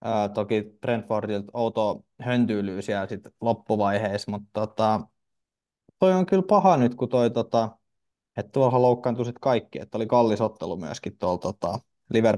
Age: 20-39